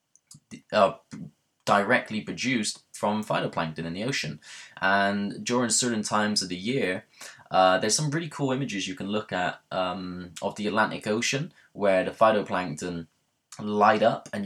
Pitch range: 90-105 Hz